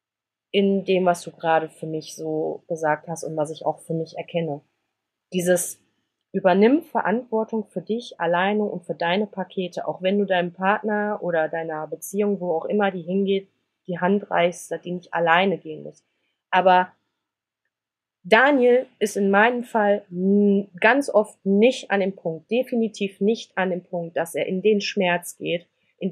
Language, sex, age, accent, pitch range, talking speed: German, female, 30-49, German, 170-210 Hz, 165 wpm